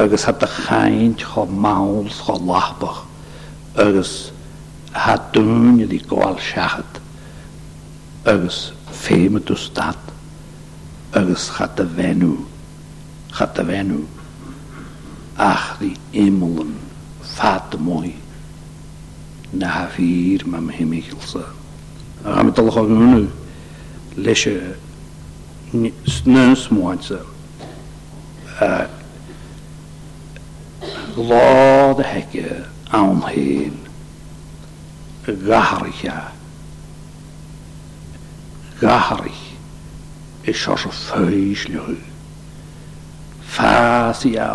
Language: English